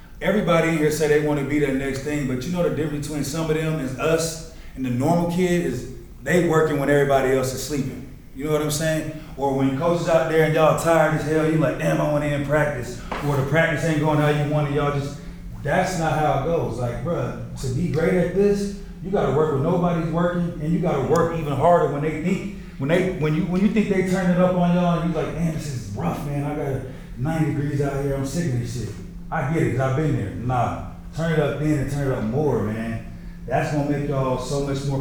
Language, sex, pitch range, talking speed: English, male, 135-165 Hz, 265 wpm